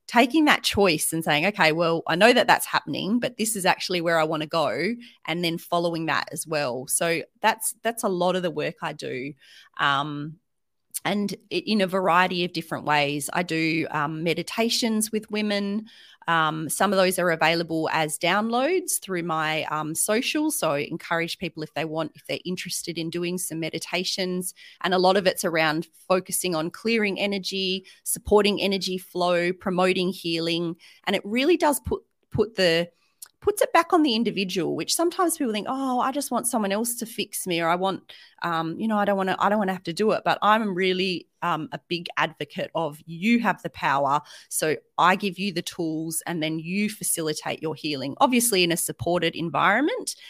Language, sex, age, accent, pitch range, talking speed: English, female, 30-49, Australian, 160-205 Hz, 195 wpm